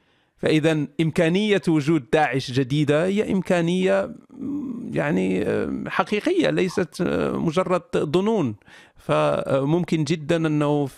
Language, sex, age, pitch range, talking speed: Arabic, male, 40-59, 135-160 Hz, 80 wpm